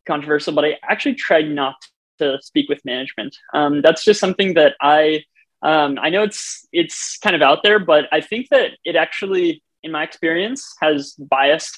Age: 20-39